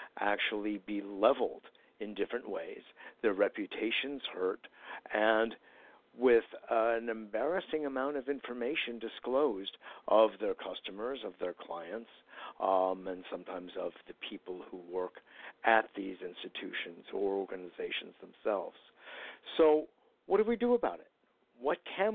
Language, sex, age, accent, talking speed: English, male, 50-69, American, 125 wpm